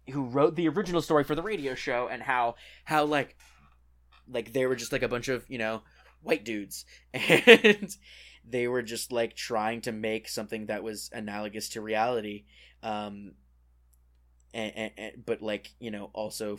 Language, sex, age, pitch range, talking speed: English, male, 10-29, 100-125 Hz, 175 wpm